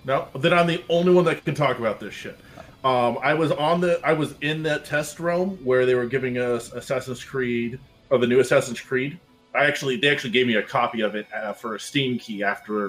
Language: English